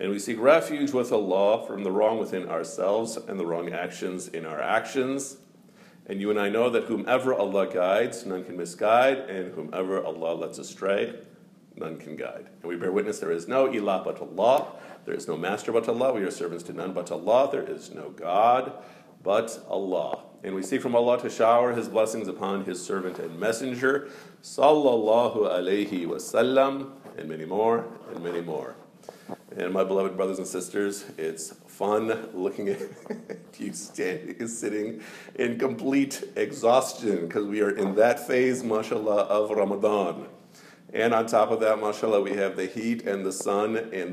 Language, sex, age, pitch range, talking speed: English, male, 50-69, 95-125 Hz, 175 wpm